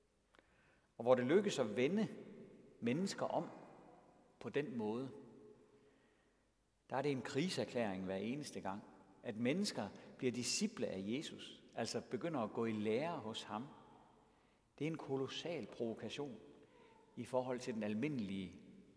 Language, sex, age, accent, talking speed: Danish, male, 60-79, native, 135 wpm